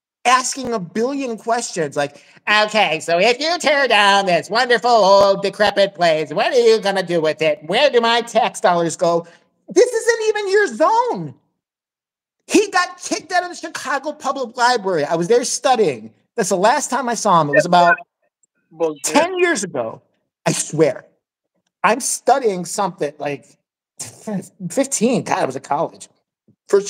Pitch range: 160-235 Hz